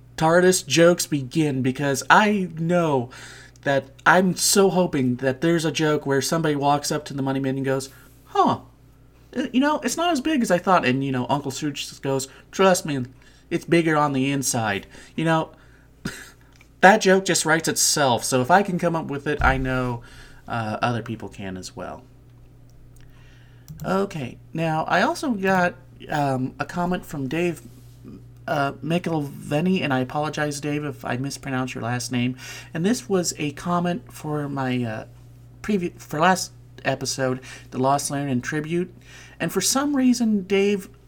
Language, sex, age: English, male, 30-49